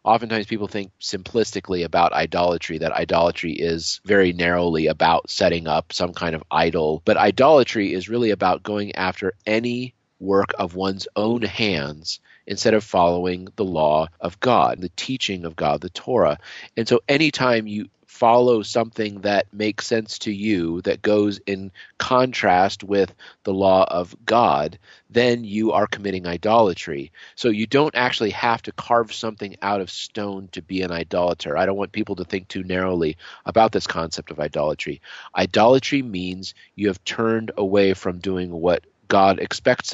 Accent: American